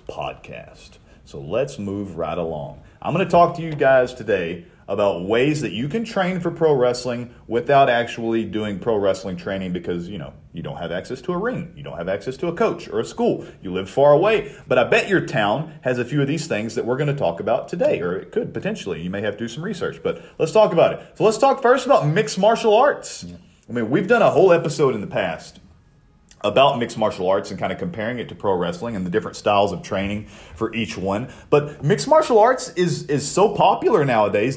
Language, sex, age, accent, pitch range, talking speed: English, male, 40-59, American, 115-170 Hz, 235 wpm